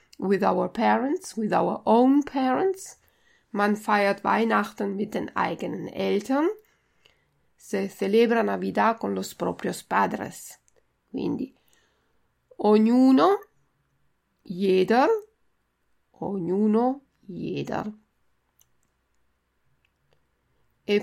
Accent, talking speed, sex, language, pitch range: native, 75 wpm, female, Italian, 200-260 Hz